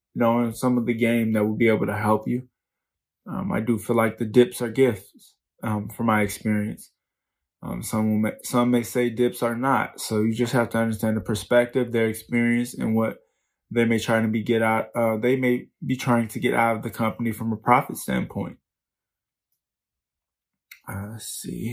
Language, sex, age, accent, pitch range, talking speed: English, male, 20-39, American, 110-120 Hz, 200 wpm